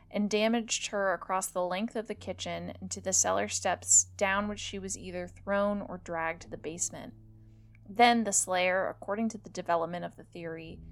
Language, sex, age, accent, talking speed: English, female, 20-39, American, 185 wpm